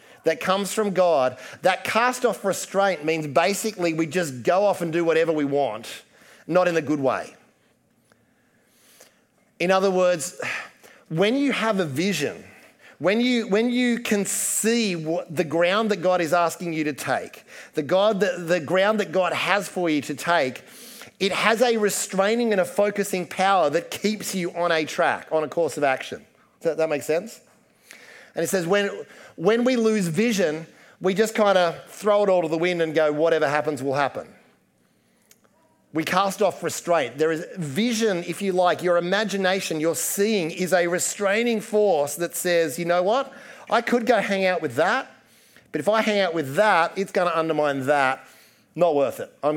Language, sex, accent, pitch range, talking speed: English, male, Australian, 160-205 Hz, 180 wpm